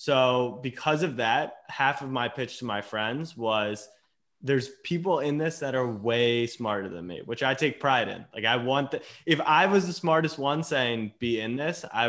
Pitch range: 115-140 Hz